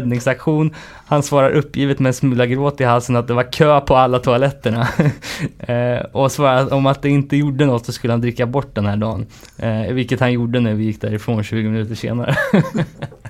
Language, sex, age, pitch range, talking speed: Swedish, male, 20-39, 120-155 Hz, 205 wpm